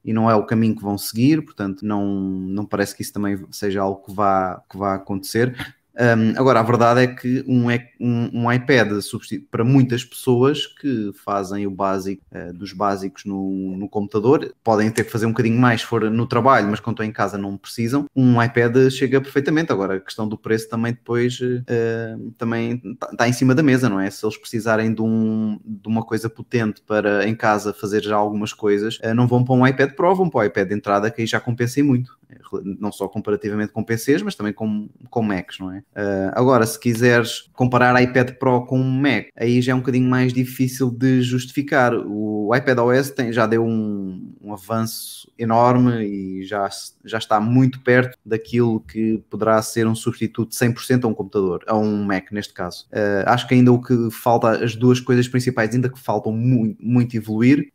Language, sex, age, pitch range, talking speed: Portuguese, male, 20-39, 105-125 Hz, 195 wpm